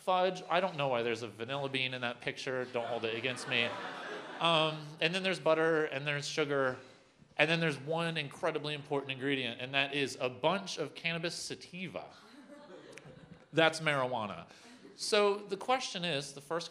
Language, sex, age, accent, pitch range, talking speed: English, male, 30-49, American, 115-155 Hz, 170 wpm